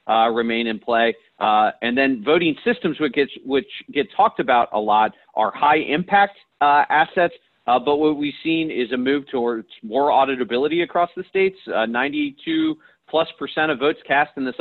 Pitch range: 120-165 Hz